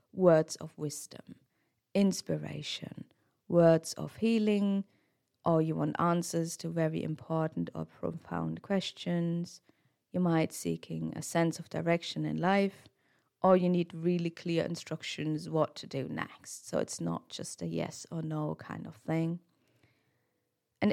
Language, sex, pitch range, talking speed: English, female, 155-185 Hz, 140 wpm